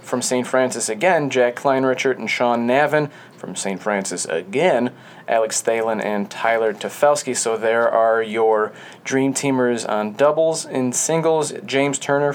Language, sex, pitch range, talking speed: English, male, 115-135 Hz, 145 wpm